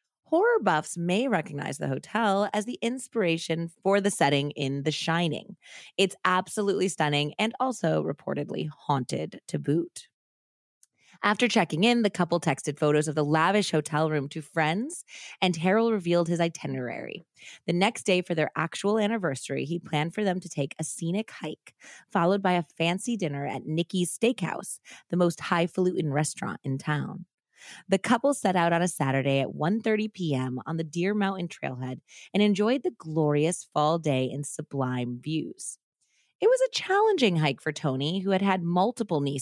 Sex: female